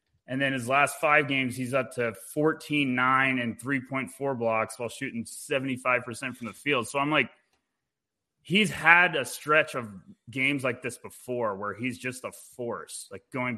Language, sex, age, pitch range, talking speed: English, male, 20-39, 115-135 Hz, 170 wpm